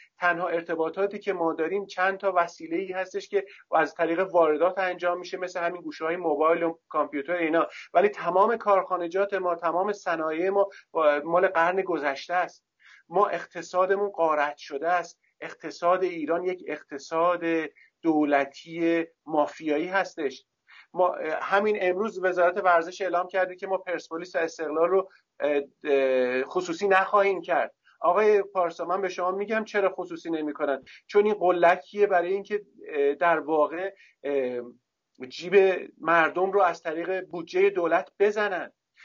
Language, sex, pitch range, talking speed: Persian, male, 165-195 Hz, 135 wpm